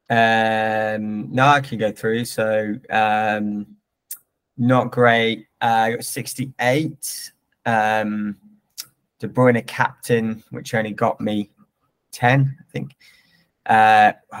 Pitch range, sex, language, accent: 105-125 Hz, male, English, British